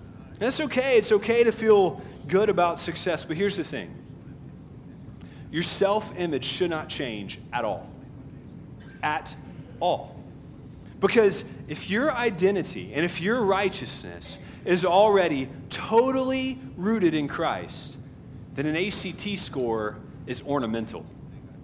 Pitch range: 145-195 Hz